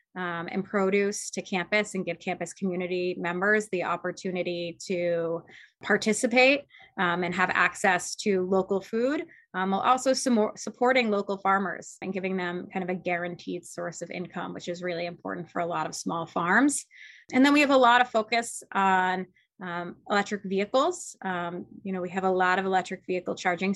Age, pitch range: 20-39, 175-200 Hz